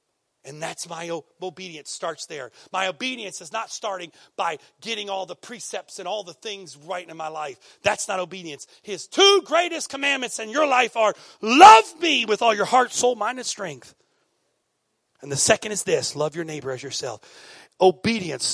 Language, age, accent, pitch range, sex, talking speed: English, 40-59, American, 155-225 Hz, male, 180 wpm